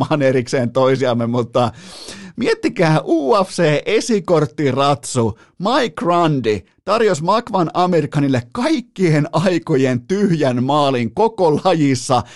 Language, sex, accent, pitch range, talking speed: Finnish, male, native, 130-185 Hz, 85 wpm